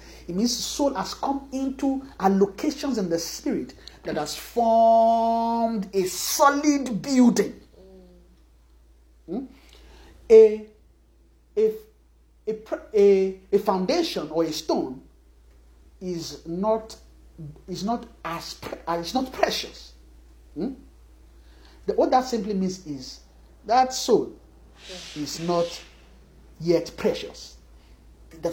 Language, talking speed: English, 100 wpm